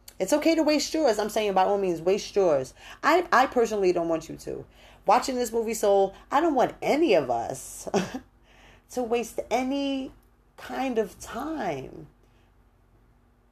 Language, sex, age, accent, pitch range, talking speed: English, female, 30-49, American, 155-225 Hz, 155 wpm